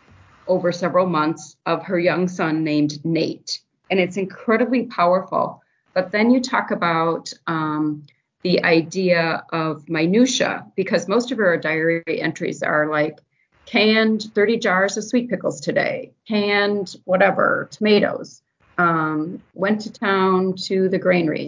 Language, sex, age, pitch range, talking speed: English, female, 40-59, 165-205 Hz, 135 wpm